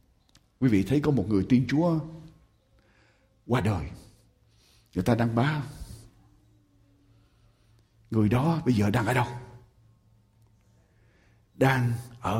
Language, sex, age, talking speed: Ukrainian, male, 60-79, 110 wpm